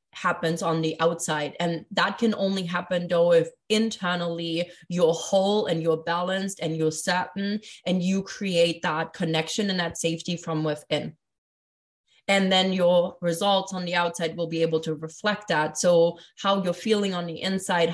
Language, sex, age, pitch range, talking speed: English, female, 20-39, 170-190 Hz, 165 wpm